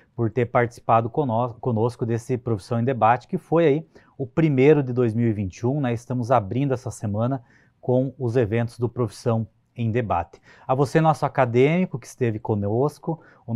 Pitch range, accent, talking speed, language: 115-145 Hz, Brazilian, 165 wpm, Portuguese